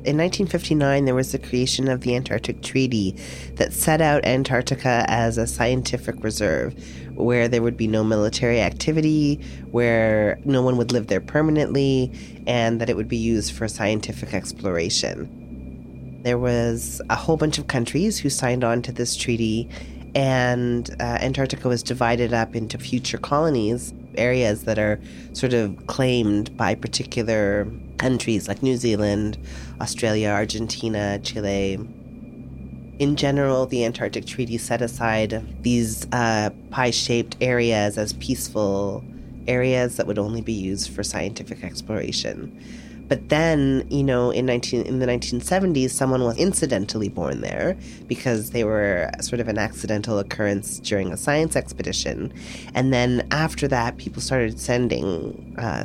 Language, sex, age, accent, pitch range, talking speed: English, female, 30-49, American, 105-125 Hz, 145 wpm